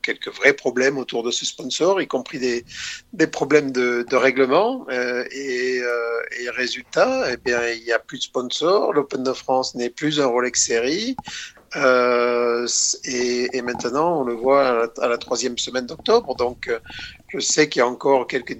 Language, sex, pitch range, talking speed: French, male, 120-140 Hz, 185 wpm